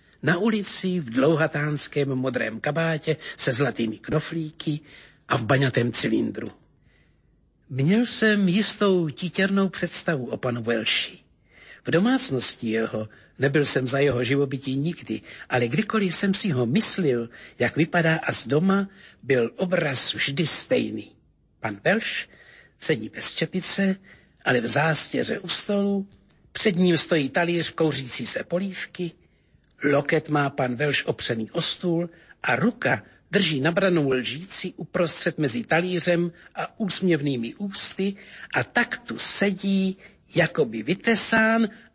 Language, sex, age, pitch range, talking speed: Slovak, male, 60-79, 125-180 Hz, 125 wpm